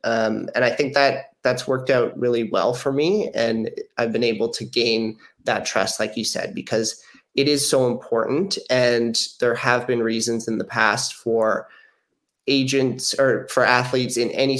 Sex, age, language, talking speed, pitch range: male, 30-49, English, 175 wpm, 110-125 Hz